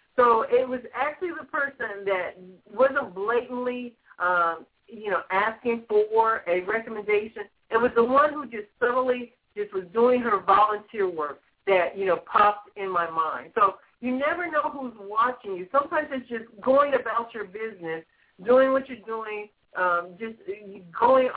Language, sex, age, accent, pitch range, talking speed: English, female, 50-69, American, 190-255 Hz, 160 wpm